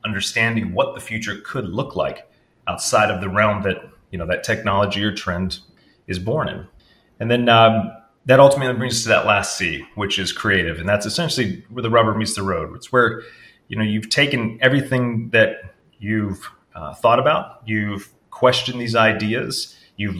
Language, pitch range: English, 105-130 Hz